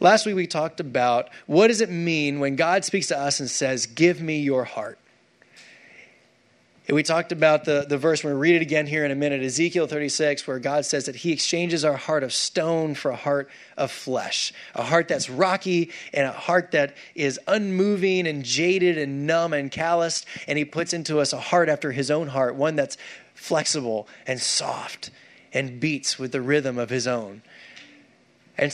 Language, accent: English, American